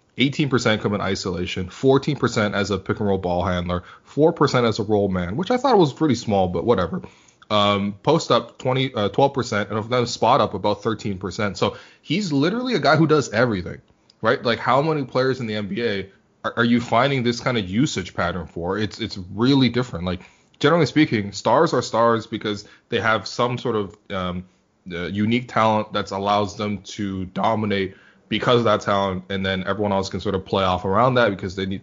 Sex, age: male, 20-39